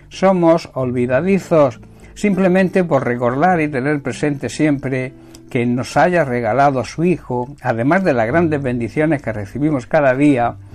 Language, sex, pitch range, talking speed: Spanish, male, 125-160 Hz, 140 wpm